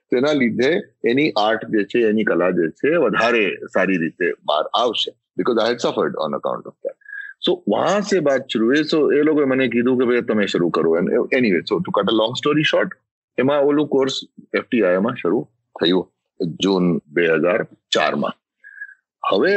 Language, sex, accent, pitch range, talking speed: English, male, Indian, 105-160 Hz, 60 wpm